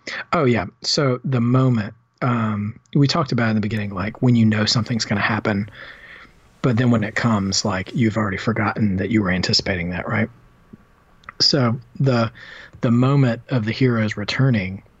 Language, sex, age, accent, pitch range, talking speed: English, male, 40-59, American, 105-120 Hz, 170 wpm